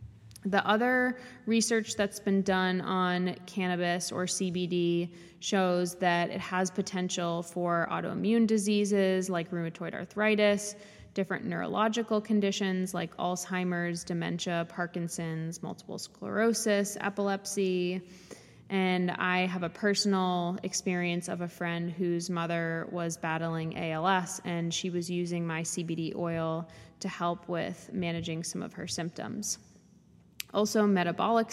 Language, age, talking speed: English, 20-39, 120 wpm